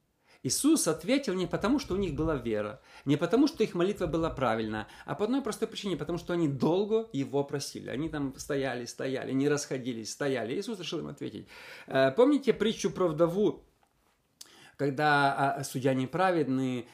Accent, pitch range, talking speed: native, 145-205 Hz, 160 wpm